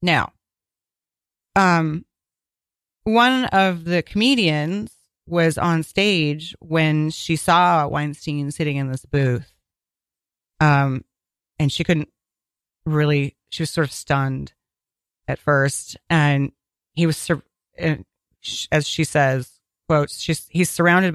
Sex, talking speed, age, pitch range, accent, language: female, 110 wpm, 30-49, 145-185 Hz, American, English